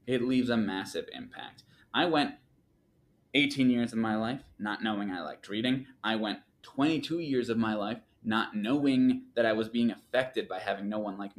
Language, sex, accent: English, male, American